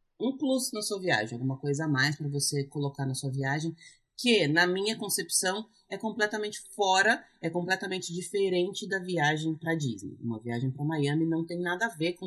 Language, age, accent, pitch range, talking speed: Portuguese, 30-49, Brazilian, 140-175 Hz, 190 wpm